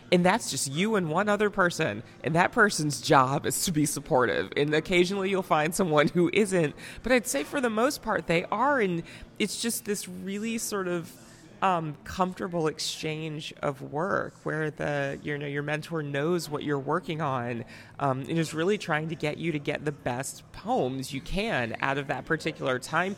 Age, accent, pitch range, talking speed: 30-49, American, 140-185 Hz, 195 wpm